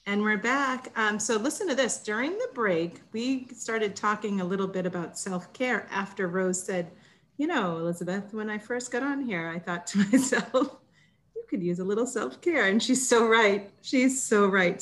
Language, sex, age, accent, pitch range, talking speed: English, female, 40-59, American, 175-210 Hz, 195 wpm